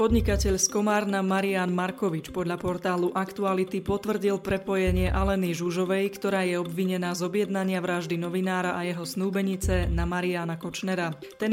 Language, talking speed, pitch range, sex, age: Slovak, 135 wpm, 175-195 Hz, female, 20-39